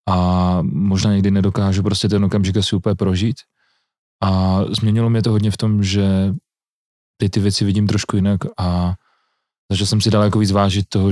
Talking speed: 180 wpm